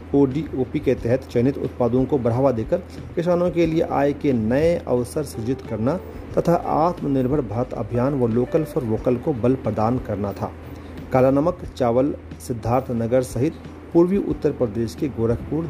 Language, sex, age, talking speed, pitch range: Hindi, male, 40-59, 155 wpm, 110-145 Hz